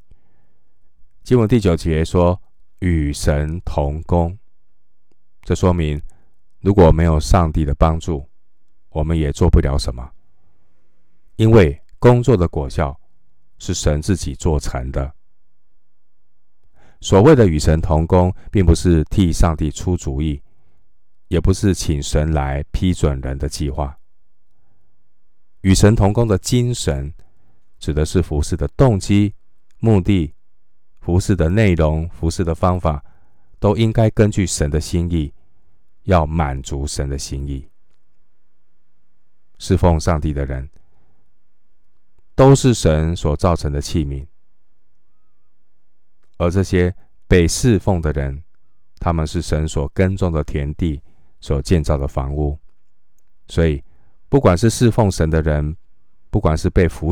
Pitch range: 75-95 Hz